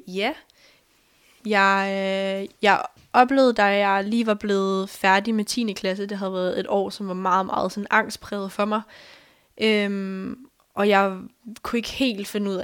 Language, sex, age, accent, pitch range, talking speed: Danish, female, 10-29, native, 185-210 Hz, 165 wpm